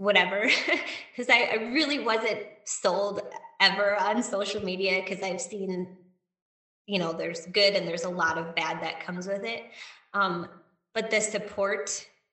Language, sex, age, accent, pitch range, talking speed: English, female, 20-39, American, 190-215 Hz, 150 wpm